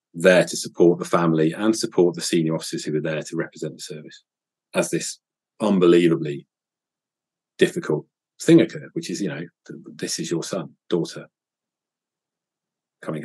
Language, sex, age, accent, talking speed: English, male, 40-59, British, 150 wpm